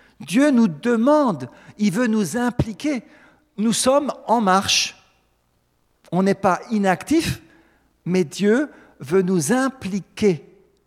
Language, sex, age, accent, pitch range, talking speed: French, male, 50-69, French, 125-210 Hz, 110 wpm